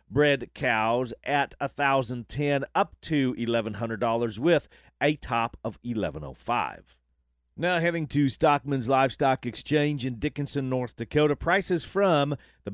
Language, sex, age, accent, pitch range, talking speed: English, male, 40-59, American, 115-145 Hz, 120 wpm